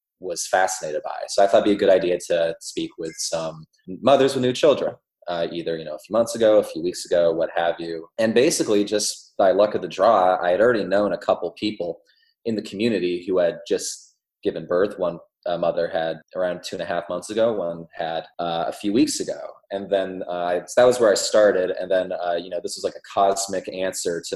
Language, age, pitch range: English, 20-39, 85-120 Hz